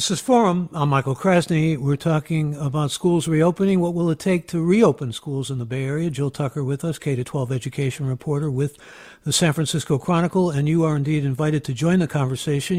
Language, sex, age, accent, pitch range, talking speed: English, male, 60-79, American, 145-175 Hz, 200 wpm